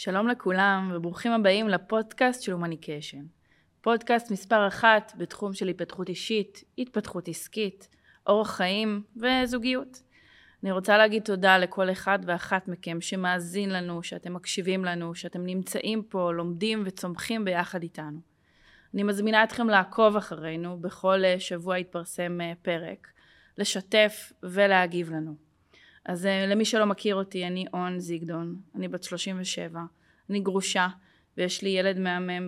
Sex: female